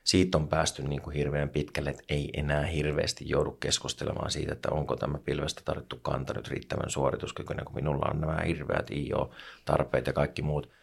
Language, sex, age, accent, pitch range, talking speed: Finnish, male, 30-49, native, 75-80 Hz, 170 wpm